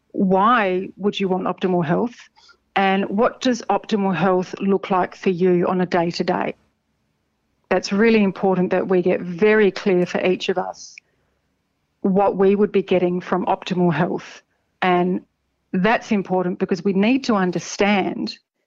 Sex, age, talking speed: female, 40-59, 150 wpm